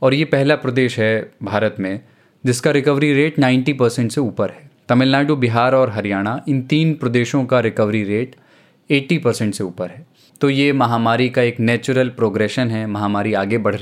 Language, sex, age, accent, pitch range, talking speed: Hindi, male, 20-39, native, 110-135 Hz, 180 wpm